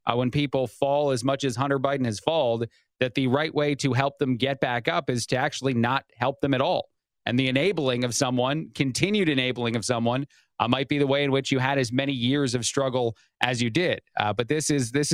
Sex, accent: male, American